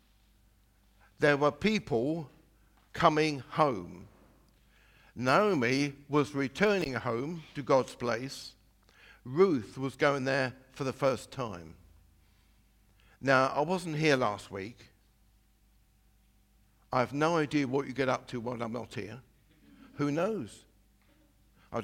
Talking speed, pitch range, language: 115 wpm, 105-145 Hz, English